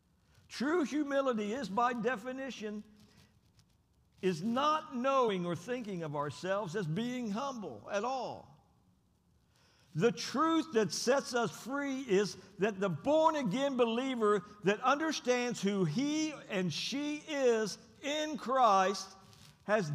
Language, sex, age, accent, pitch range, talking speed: English, male, 60-79, American, 165-275 Hz, 115 wpm